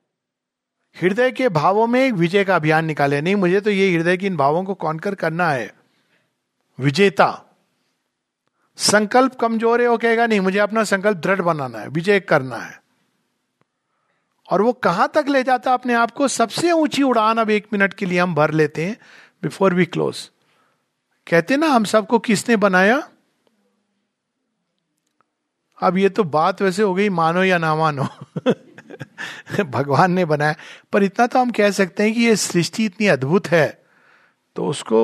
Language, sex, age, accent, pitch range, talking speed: Hindi, male, 50-69, native, 170-230 Hz, 165 wpm